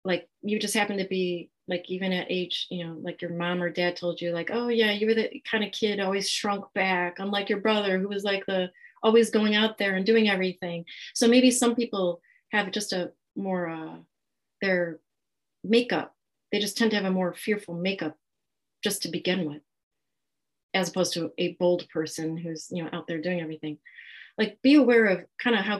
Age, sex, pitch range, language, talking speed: 30-49, female, 160-200 Hz, English, 205 wpm